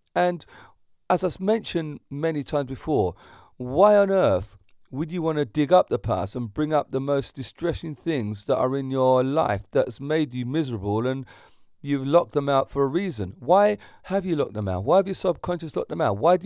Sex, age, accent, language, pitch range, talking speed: male, 40-59, British, English, 110-175 Hz, 210 wpm